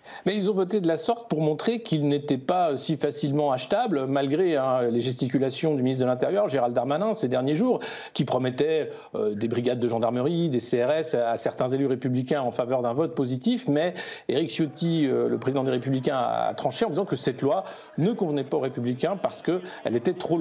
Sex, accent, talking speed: male, French, 210 wpm